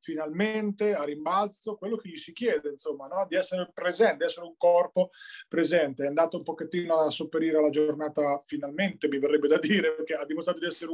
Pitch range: 155-195 Hz